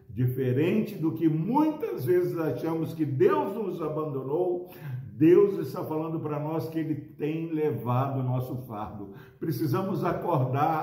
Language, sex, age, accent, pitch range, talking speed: Portuguese, male, 60-79, Brazilian, 130-185 Hz, 135 wpm